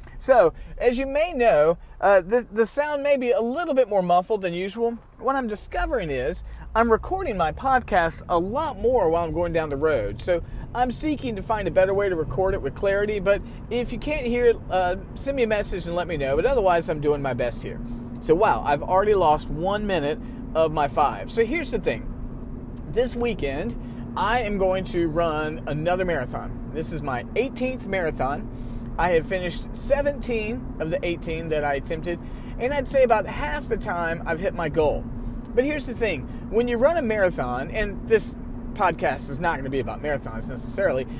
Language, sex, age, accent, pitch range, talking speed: English, male, 40-59, American, 155-235 Hz, 200 wpm